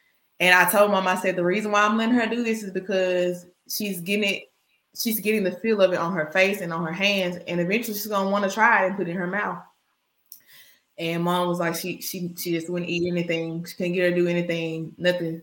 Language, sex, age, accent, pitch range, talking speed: English, female, 20-39, American, 175-225 Hz, 255 wpm